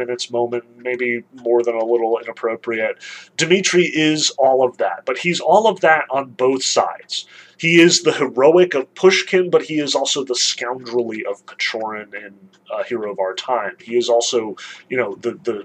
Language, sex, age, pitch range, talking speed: English, male, 30-49, 120-175 Hz, 190 wpm